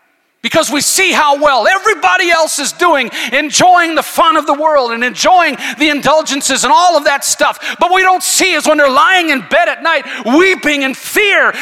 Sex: male